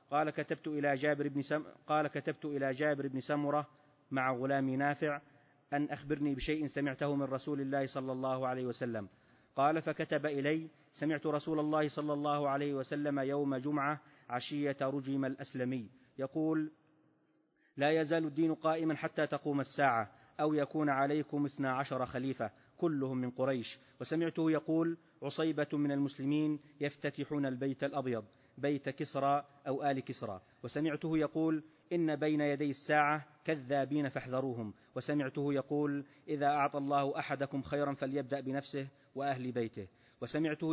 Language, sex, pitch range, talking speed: Arabic, male, 135-150 Hz, 135 wpm